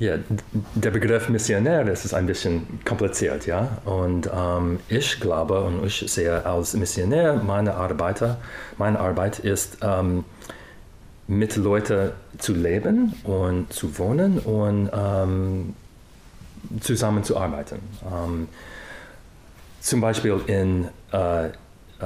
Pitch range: 90-105 Hz